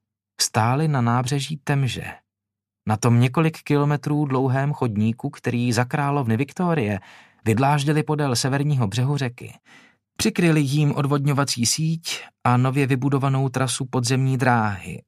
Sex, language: male, Czech